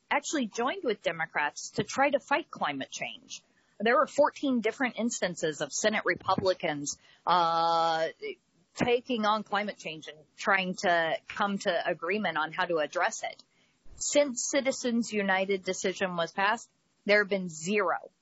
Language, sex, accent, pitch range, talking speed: English, female, American, 175-245 Hz, 145 wpm